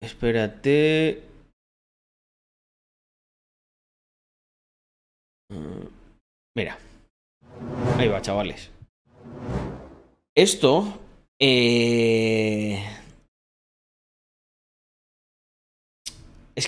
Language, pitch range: Spanish, 90-135 Hz